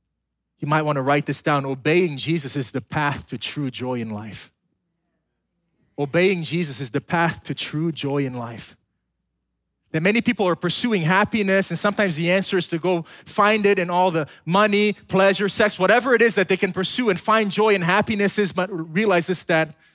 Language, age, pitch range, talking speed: English, 20-39, 170-220 Hz, 195 wpm